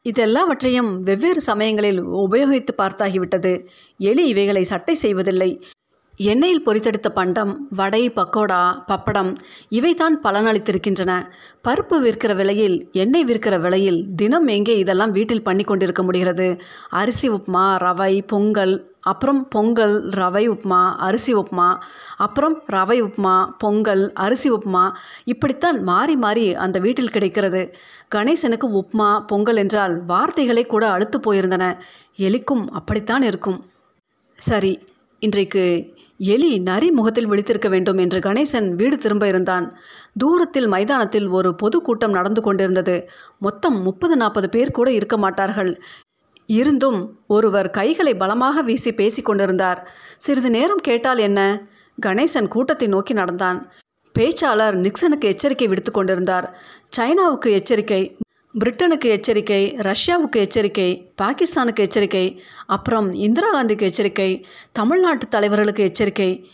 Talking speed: 110 wpm